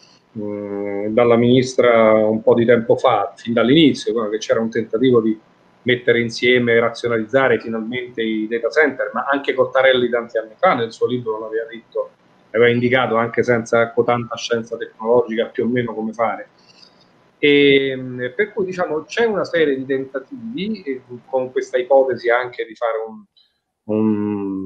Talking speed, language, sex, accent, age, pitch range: 145 wpm, Italian, male, native, 30-49, 115-155 Hz